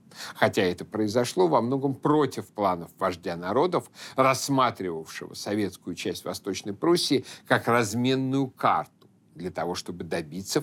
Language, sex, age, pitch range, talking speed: Russian, male, 60-79, 105-135 Hz, 120 wpm